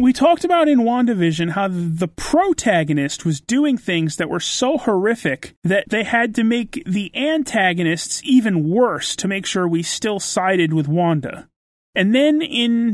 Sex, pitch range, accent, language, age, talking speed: male, 170-240 Hz, American, English, 30-49, 160 wpm